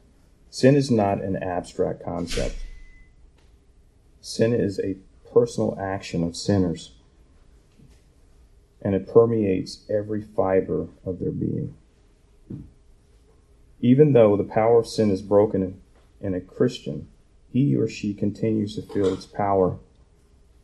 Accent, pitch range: American, 80-100 Hz